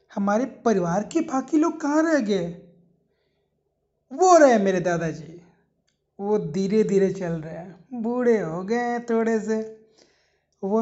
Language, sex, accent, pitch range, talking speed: English, male, Indian, 195-250 Hz, 130 wpm